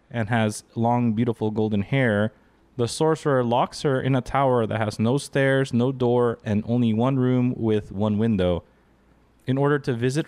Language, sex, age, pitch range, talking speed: English, male, 20-39, 115-145 Hz, 175 wpm